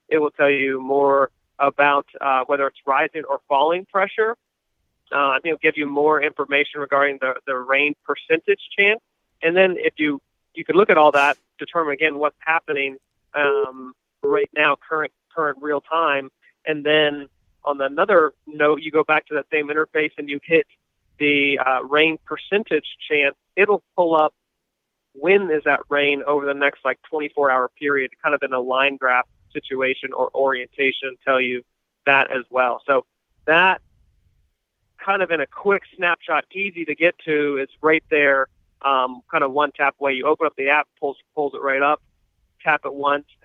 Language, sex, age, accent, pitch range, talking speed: English, male, 40-59, American, 135-155 Hz, 175 wpm